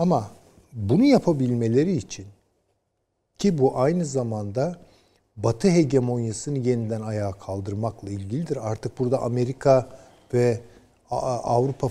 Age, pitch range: 50-69, 105-150 Hz